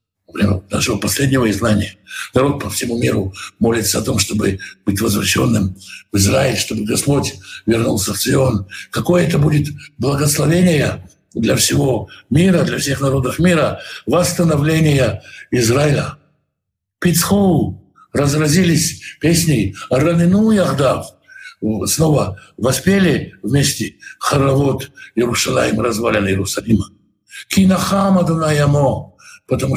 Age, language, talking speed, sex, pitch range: 60-79, Russian, 95 wpm, male, 115-165 Hz